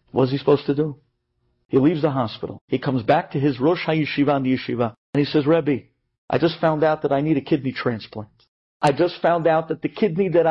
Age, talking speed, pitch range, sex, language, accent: 50-69, 235 wpm, 140-230 Hz, male, English, American